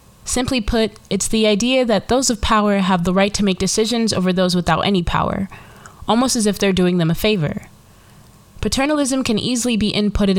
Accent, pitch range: American, 175-215 Hz